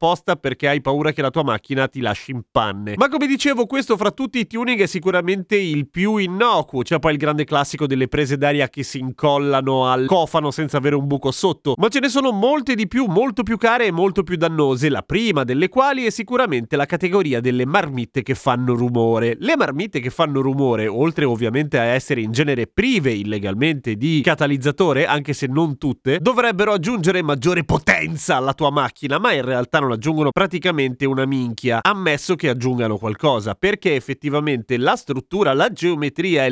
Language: Italian